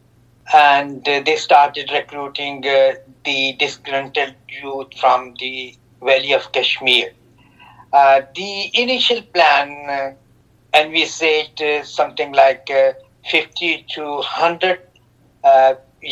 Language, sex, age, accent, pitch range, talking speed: English, male, 50-69, Indian, 125-145 Hz, 95 wpm